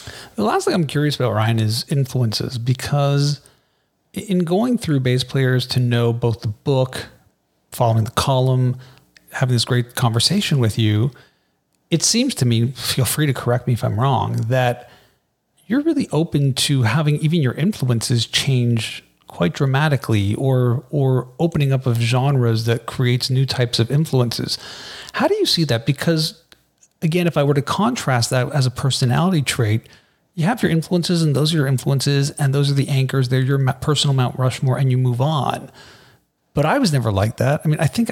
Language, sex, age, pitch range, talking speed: English, male, 40-59, 120-150 Hz, 180 wpm